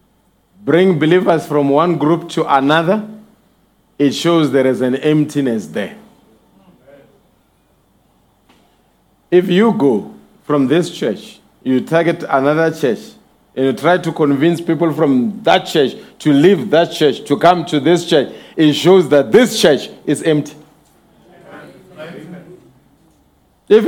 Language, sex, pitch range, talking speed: English, male, 155-215 Hz, 125 wpm